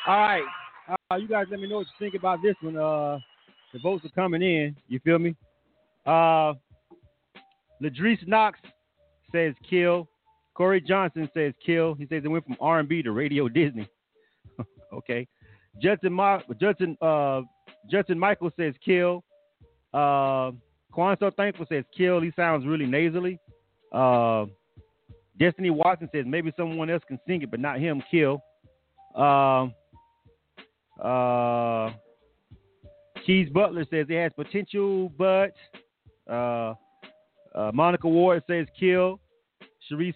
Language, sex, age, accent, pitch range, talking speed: English, male, 40-59, American, 130-185 Hz, 135 wpm